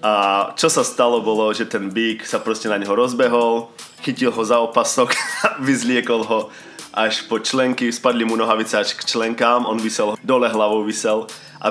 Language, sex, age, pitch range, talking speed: Slovak, male, 20-39, 105-120 Hz, 180 wpm